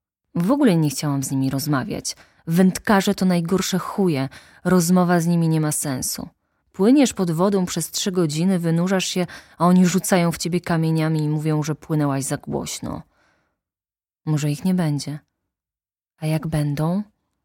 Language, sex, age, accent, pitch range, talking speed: Polish, female, 20-39, native, 140-185 Hz, 150 wpm